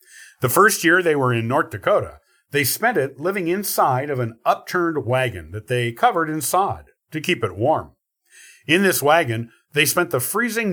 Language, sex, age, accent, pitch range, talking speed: English, male, 50-69, American, 125-180 Hz, 185 wpm